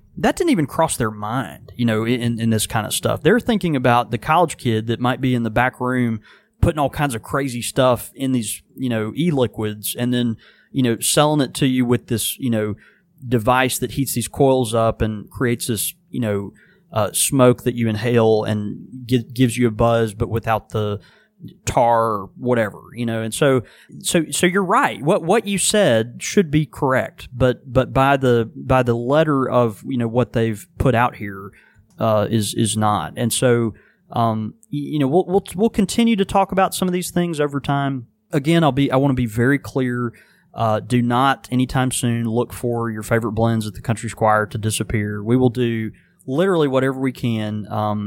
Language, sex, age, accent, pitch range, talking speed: English, male, 30-49, American, 110-135 Hz, 200 wpm